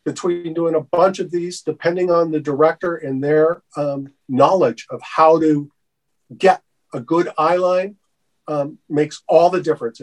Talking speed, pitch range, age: 160 wpm, 150-180 Hz, 50-69